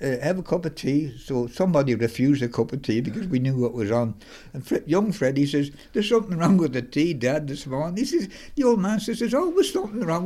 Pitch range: 115-175 Hz